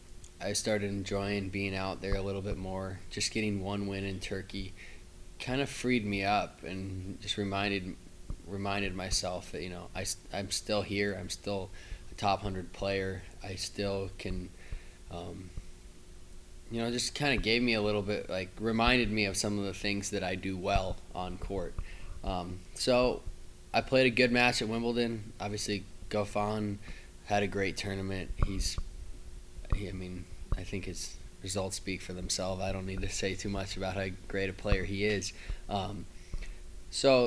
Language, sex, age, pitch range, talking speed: English, male, 20-39, 95-105 Hz, 175 wpm